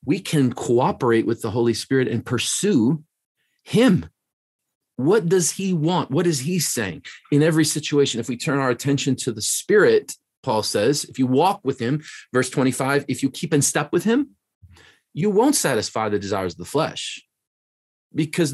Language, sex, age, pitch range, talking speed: English, male, 30-49, 115-145 Hz, 175 wpm